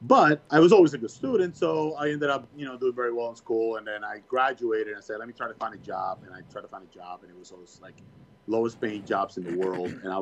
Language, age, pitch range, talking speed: English, 30-49, 95-135 Hz, 300 wpm